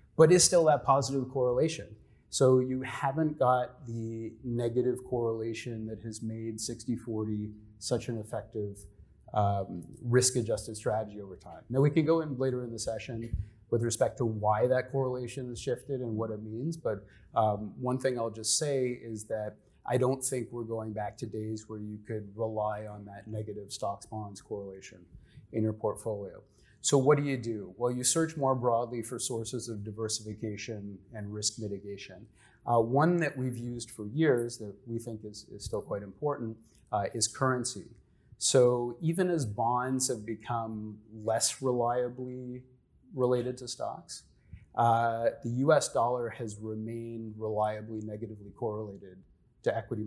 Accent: American